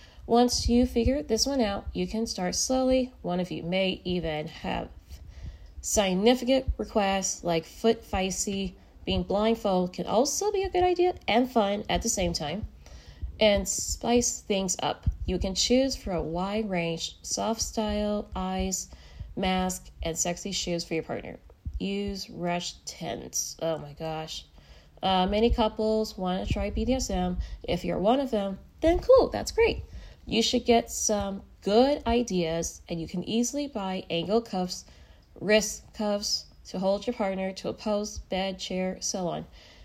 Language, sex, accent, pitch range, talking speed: English, female, American, 175-230 Hz, 155 wpm